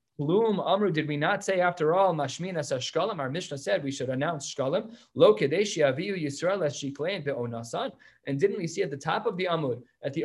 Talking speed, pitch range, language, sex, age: 145 wpm, 175-255 Hz, English, male, 20-39